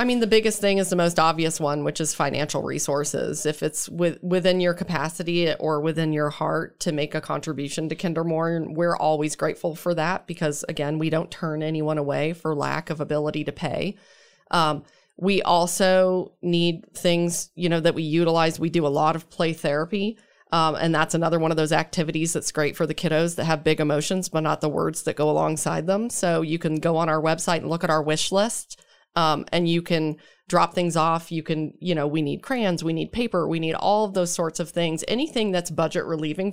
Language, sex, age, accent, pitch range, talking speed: English, female, 30-49, American, 155-180 Hz, 215 wpm